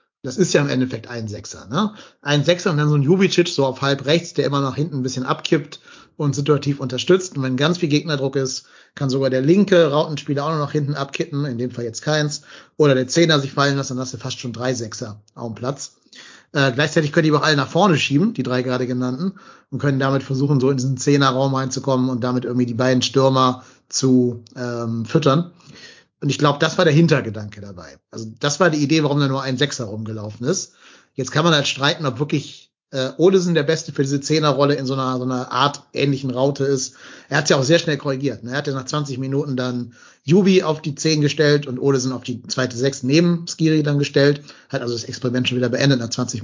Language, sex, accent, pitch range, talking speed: German, male, German, 130-155 Hz, 235 wpm